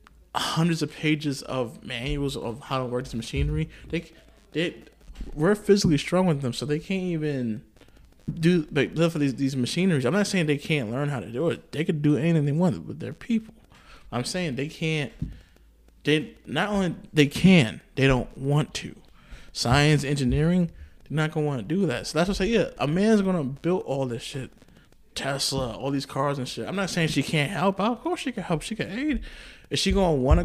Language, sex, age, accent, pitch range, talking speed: English, male, 20-39, American, 130-180 Hz, 210 wpm